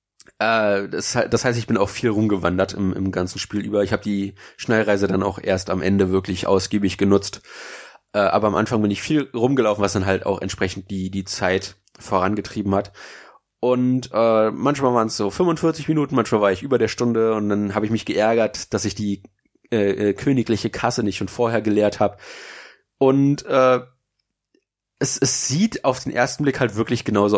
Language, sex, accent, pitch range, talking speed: German, male, German, 100-115 Hz, 185 wpm